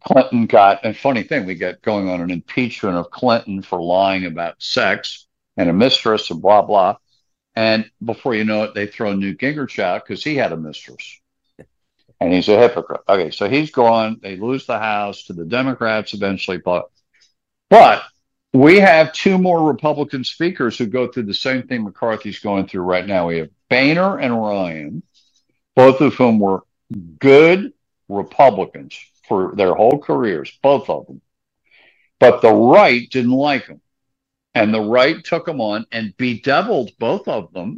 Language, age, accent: English, 50-69, American